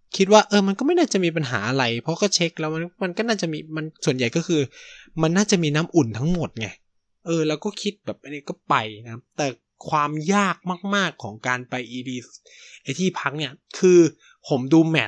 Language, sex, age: Thai, male, 20-39